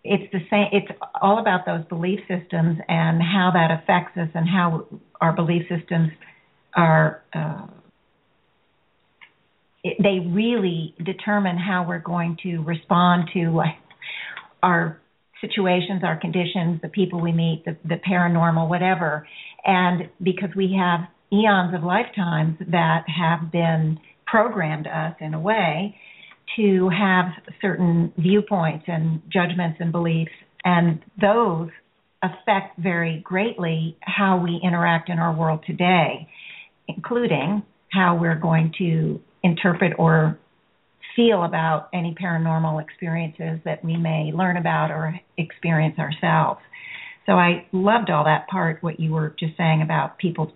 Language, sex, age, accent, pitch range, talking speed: English, female, 50-69, American, 165-190 Hz, 135 wpm